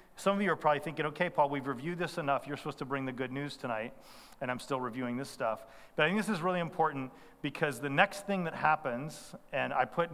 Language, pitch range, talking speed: English, 130-165 Hz, 250 wpm